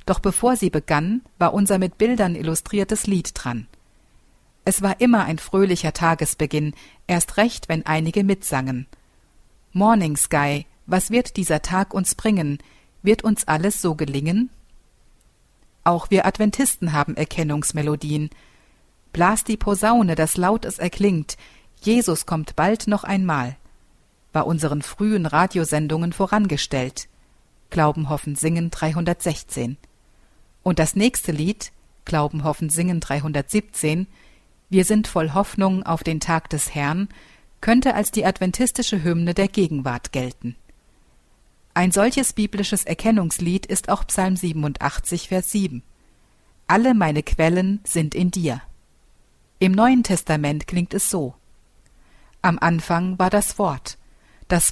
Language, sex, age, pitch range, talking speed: German, female, 50-69, 155-200 Hz, 125 wpm